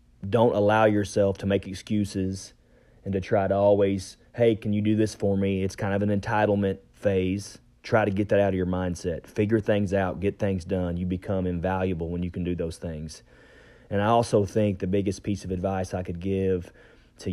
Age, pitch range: 30-49, 90-105 Hz